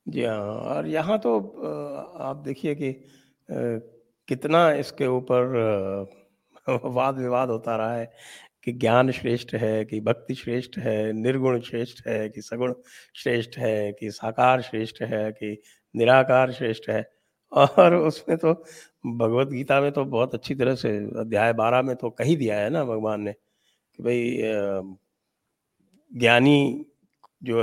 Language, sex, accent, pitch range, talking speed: English, male, Indian, 115-135 Hz, 120 wpm